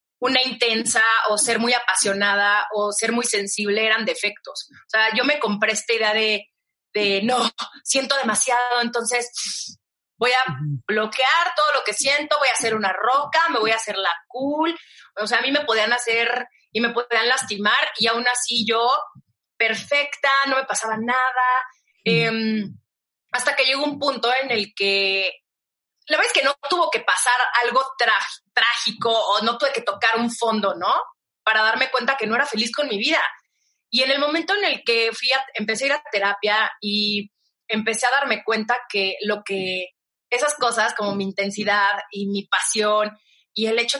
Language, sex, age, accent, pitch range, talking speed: Spanish, female, 30-49, Mexican, 210-260 Hz, 185 wpm